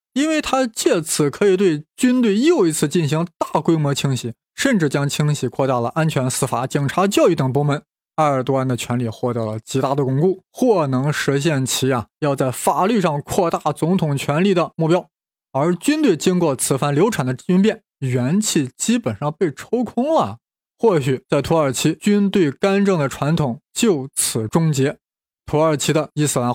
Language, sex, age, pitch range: Chinese, male, 20-39, 135-195 Hz